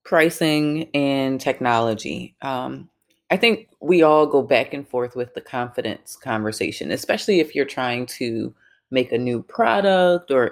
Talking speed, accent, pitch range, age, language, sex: 150 wpm, American, 135-170 Hz, 30-49, English, female